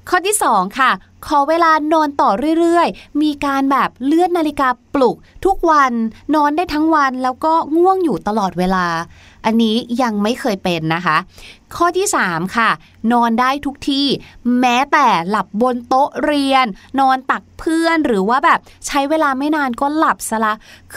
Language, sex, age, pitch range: Thai, female, 20-39, 200-290 Hz